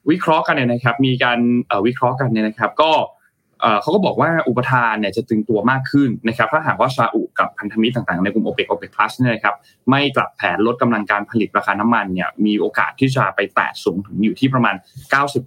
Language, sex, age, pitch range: Thai, male, 20-39, 110-135 Hz